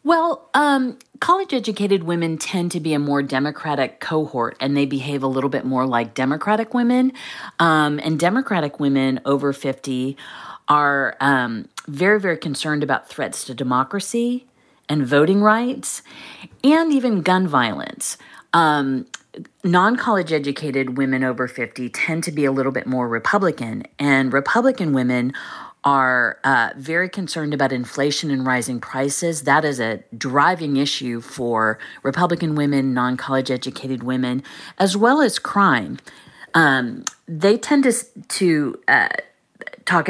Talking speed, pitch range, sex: 135 wpm, 130-175 Hz, female